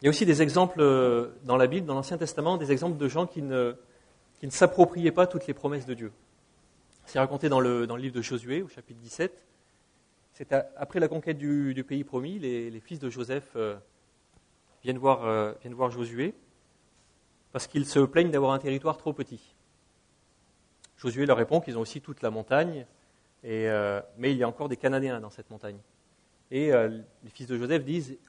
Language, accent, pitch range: English, French, 115-145 Hz